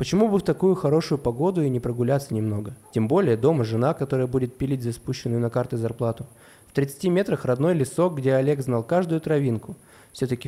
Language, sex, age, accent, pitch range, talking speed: Russian, male, 20-39, native, 115-150 Hz, 190 wpm